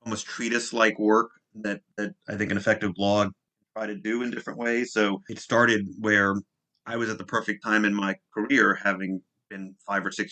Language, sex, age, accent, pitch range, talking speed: English, male, 30-49, American, 100-115 Hz, 200 wpm